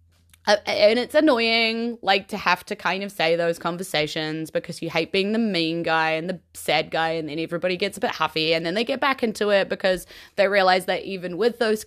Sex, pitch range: female, 180-265 Hz